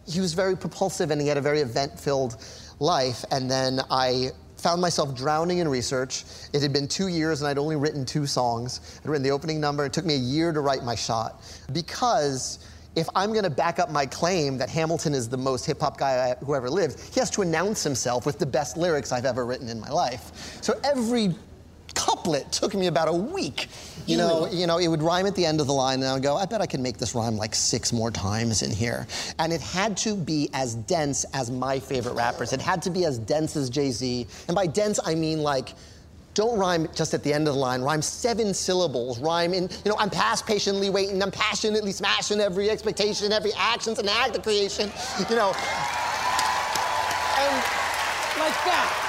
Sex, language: male, English